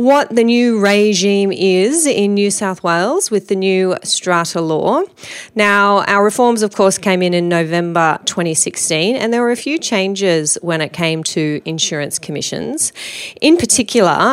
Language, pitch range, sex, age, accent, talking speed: English, 170-220 Hz, female, 30-49, Australian, 160 wpm